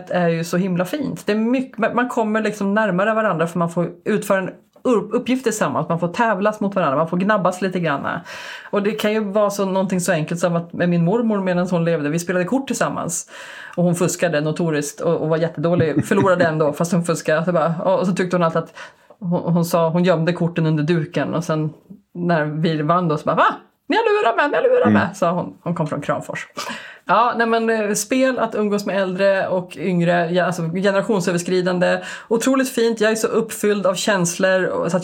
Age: 30-49